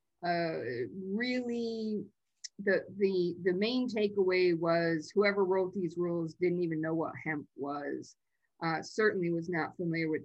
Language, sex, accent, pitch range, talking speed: English, female, American, 170-210 Hz, 140 wpm